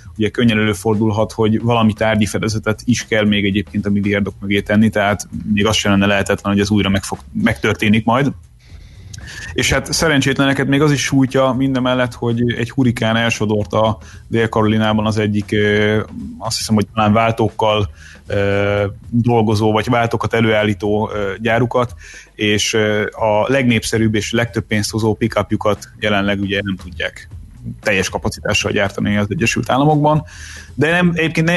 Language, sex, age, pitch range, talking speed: Hungarian, male, 30-49, 105-125 Hz, 145 wpm